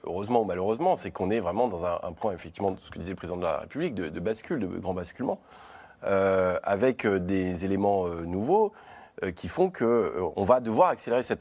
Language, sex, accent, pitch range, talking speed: French, male, French, 100-150 Hz, 225 wpm